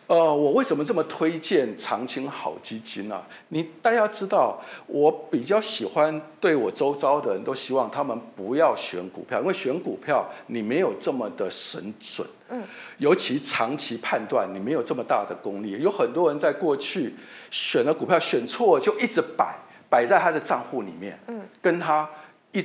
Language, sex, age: Chinese, male, 50-69